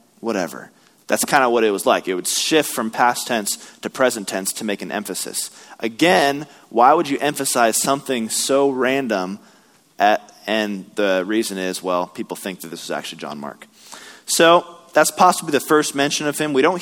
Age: 20-39